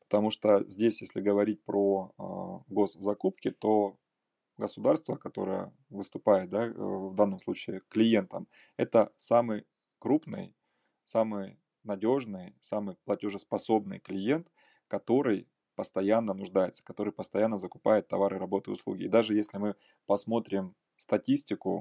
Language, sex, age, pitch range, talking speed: Russian, male, 20-39, 100-115 Hz, 105 wpm